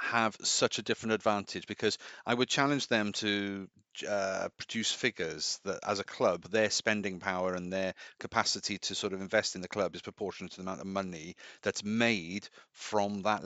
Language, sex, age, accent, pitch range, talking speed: English, male, 40-59, British, 95-110 Hz, 185 wpm